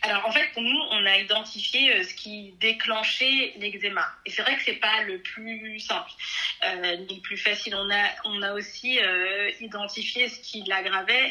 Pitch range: 195-235 Hz